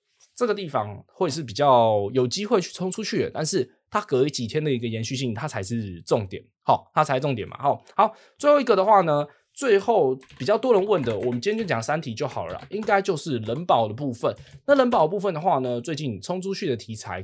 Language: Chinese